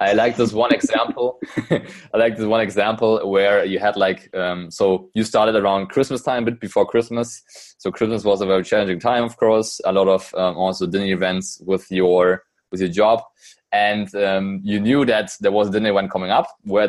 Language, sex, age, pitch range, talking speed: English, male, 20-39, 90-105 Hz, 205 wpm